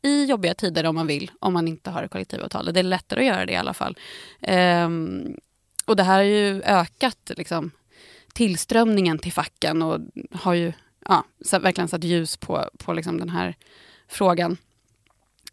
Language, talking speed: Swedish, 155 wpm